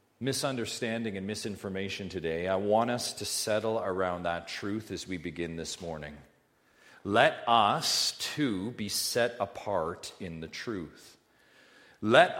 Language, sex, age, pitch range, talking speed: English, male, 40-59, 85-110 Hz, 130 wpm